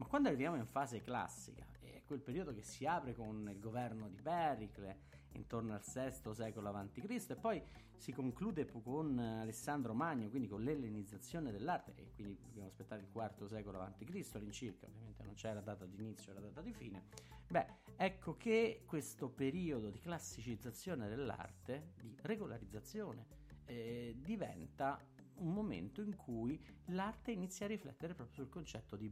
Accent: native